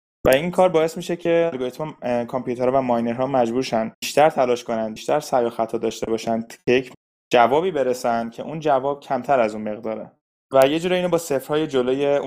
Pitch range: 115-140 Hz